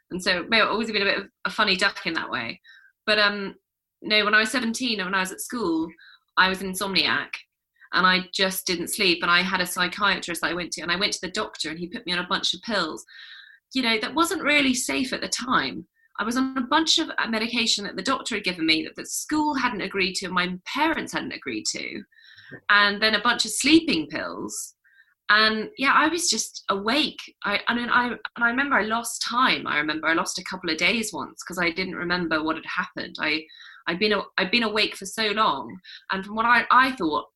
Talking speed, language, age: 240 wpm, English, 20-39